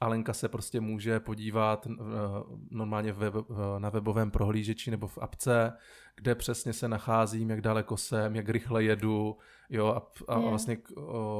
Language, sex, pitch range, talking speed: Czech, male, 105-115 Hz, 130 wpm